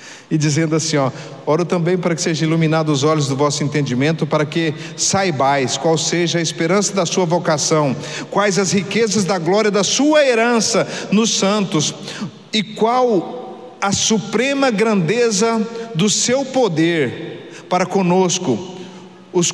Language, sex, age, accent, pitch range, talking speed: Portuguese, male, 50-69, Brazilian, 165-215 Hz, 140 wpm